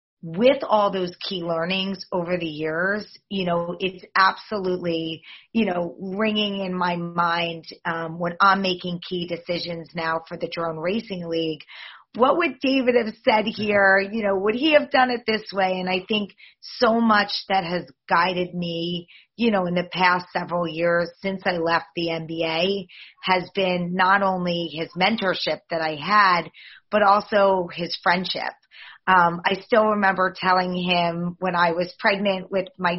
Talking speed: 165 wpm